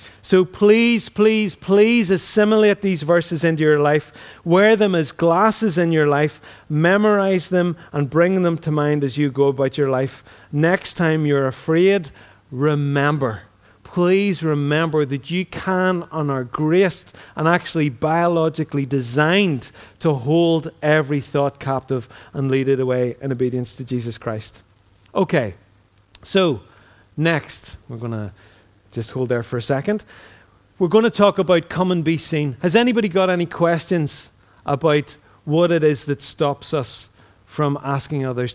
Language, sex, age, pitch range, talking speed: English, male, 30-49, 125-170 Hz, 150 wpm